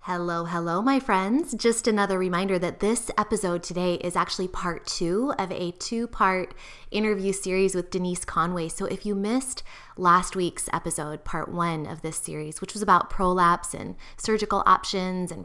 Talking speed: 165 wpm